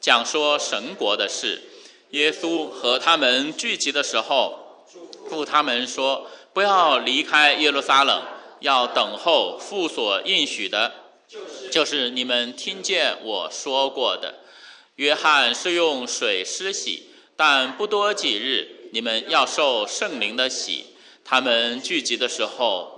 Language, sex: English, male